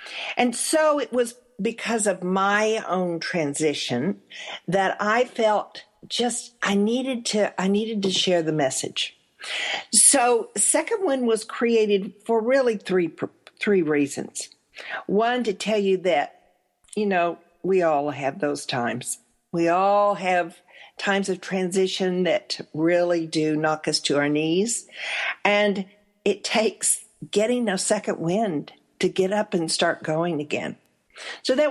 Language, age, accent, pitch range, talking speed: English, 50-69, American, 175-225 Hz, 140 wpm